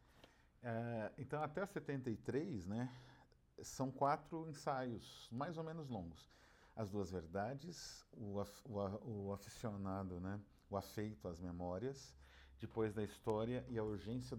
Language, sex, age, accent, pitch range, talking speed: Portuguese, male, 50-69, Brazilian, 95-125 Hz, 135 wpm